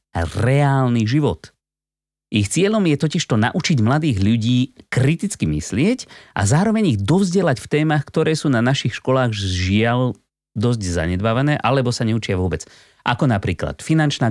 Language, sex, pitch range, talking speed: Slovak, male, 100-145 Hz, 145 wpm